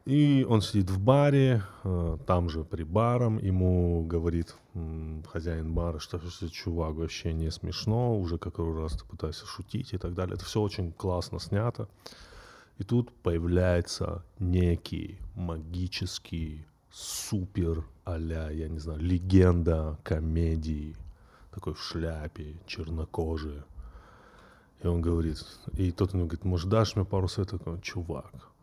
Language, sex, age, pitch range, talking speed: Russian, male, 30-49, 85-105 Hz, 135 wpm